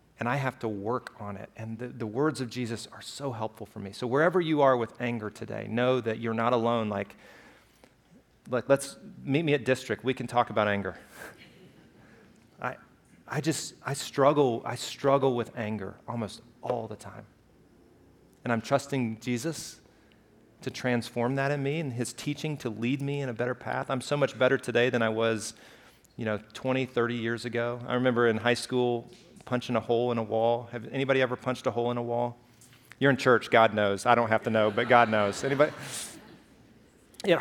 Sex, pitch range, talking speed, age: male, 115-140 Hz, 195 wpm, 30-49